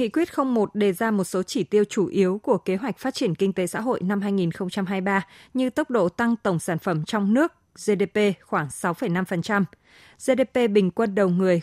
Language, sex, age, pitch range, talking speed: Vietnamese, female, 20-39, 185-230 Hz, 200 wpm